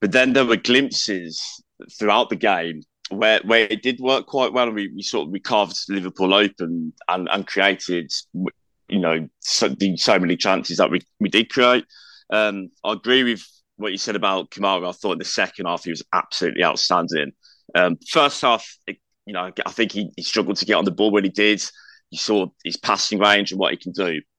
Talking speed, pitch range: 205 wpm, 95-115 Hz